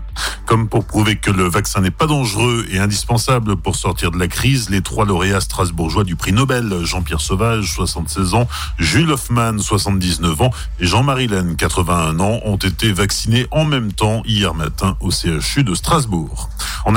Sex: male